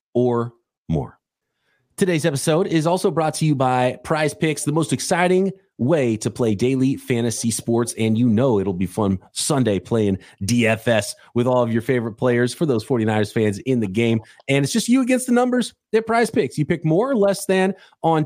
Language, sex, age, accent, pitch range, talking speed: English, male, 30-49, American, 120-180 Hz, 195 wpm